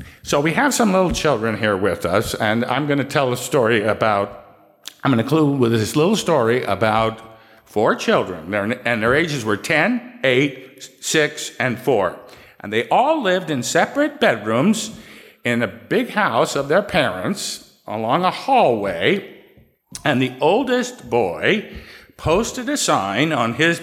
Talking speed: 160 wpm